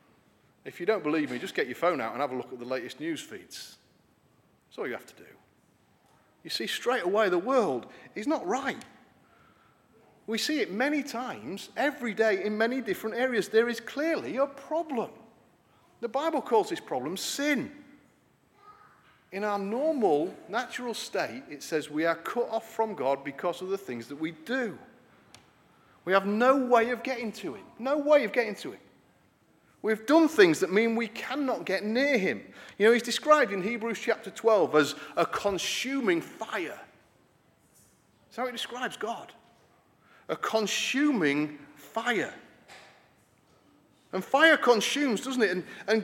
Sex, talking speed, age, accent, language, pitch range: male, 165 wpm, 40-59, British, English, 200-275 Hz